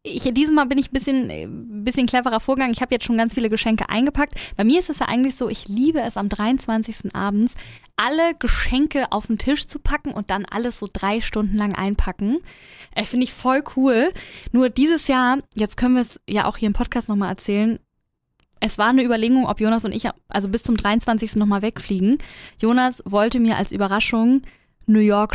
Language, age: German, 10-29